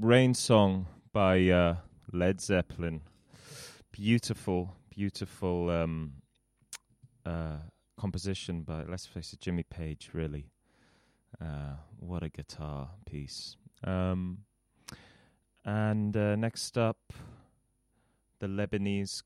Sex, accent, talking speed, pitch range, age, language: male, British, 95 wpm, 80-100 Hz, 30-49, English